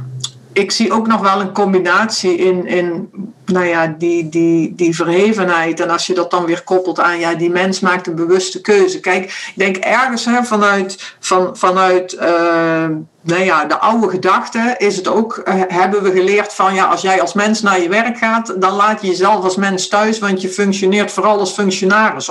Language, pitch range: Dutch, 185-215 Hz